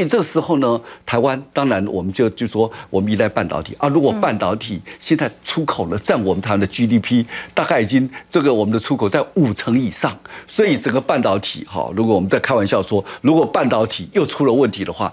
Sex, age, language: male, 50-69, Chinese